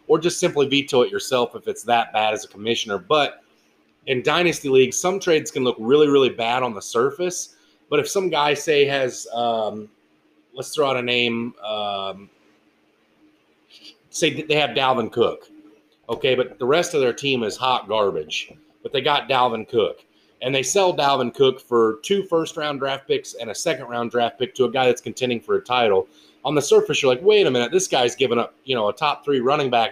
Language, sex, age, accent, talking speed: English, male, 30-49, American, 205 wpm